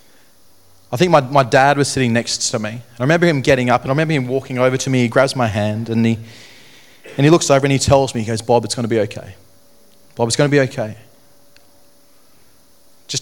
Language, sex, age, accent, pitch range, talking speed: English, male, 30-49, Australian, 100-145 Hz, 230 wpm